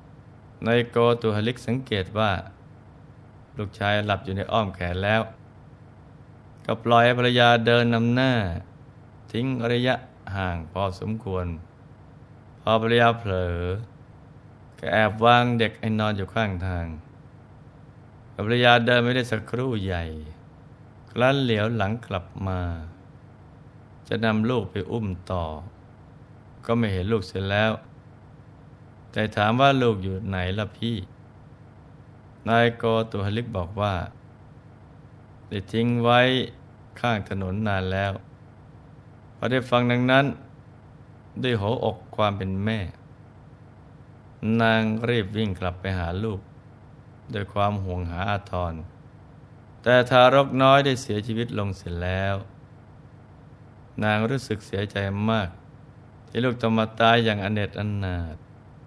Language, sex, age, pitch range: Thai, male, 20-39, 100-125 Hz